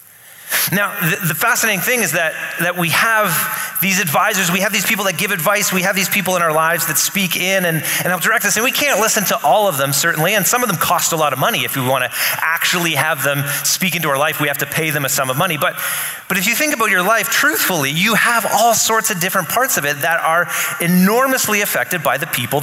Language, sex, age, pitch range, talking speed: English, male, 30-49, 150-195 Hz, 255 wpm